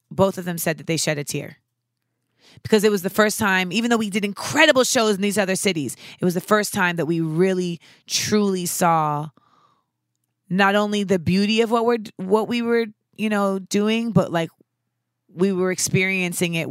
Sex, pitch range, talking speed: female, 160-215 Hz, 190 wpm